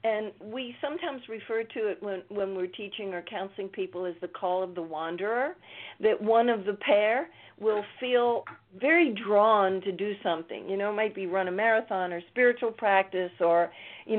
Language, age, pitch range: English, 50-69, 190-225 Hz